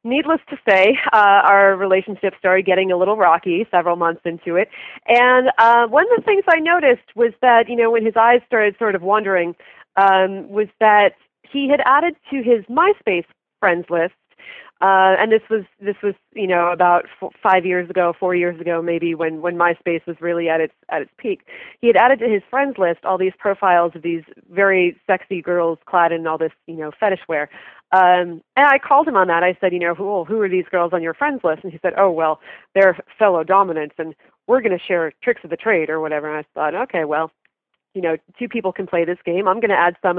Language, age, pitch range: English, 30-49, 170-220 Hz